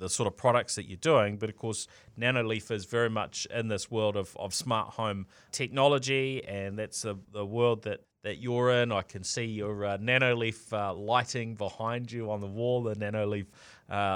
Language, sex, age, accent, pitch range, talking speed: English, male, 30-49, Australian, 100-120 Hz, 200 wpm